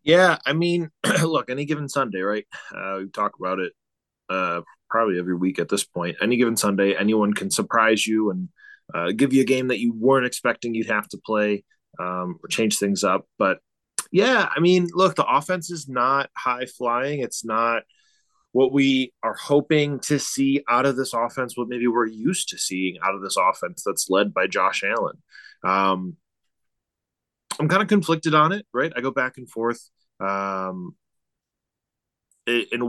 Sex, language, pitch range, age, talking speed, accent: male, English, 105-140 Hz, 20-39, 180 wpm, American